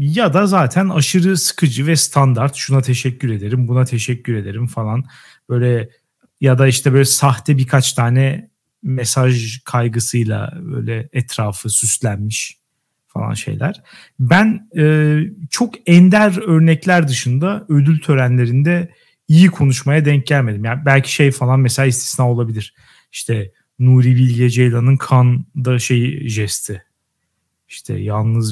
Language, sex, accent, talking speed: Turkish, male, native, 120 wpm